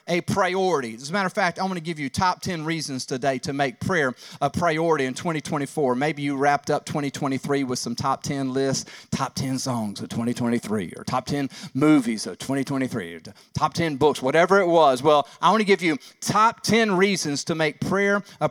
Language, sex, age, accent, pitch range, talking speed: English, male, 40-59, American, 135-170 Hz, 210 wpm